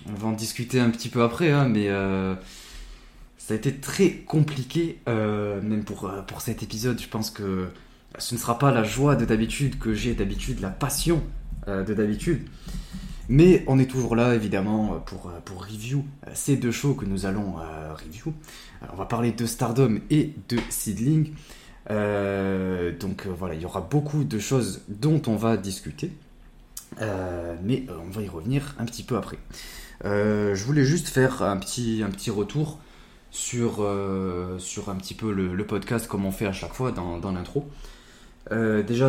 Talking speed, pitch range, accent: 180 wpm, 95-120 Hz, French